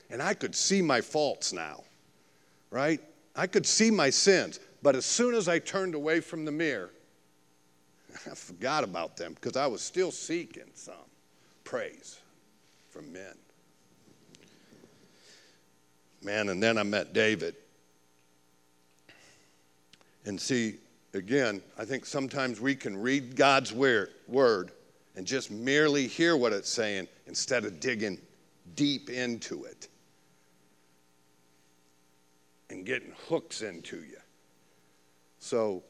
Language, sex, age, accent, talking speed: English, male, 60-79, American, 120 wpm